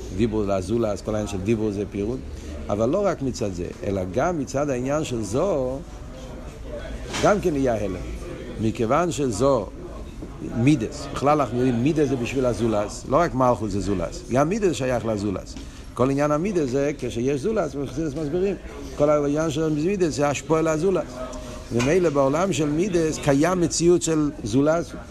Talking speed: 155 wpm